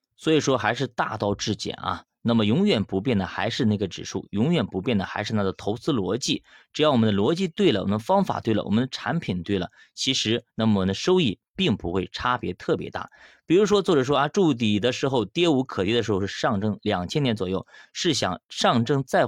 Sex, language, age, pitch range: male, Chinese, 20-39, 100-140 Hz